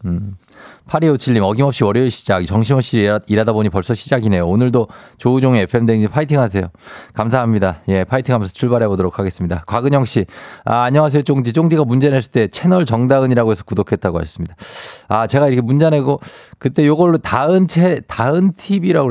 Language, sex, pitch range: Korean, male, 100-135 Hz